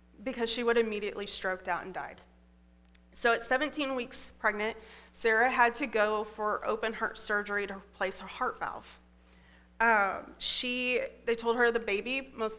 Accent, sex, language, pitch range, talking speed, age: American, female, English, 190-250 Hz, 160 wpm, 30-49